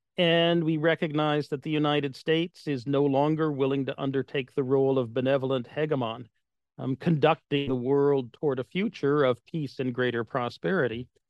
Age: 40-59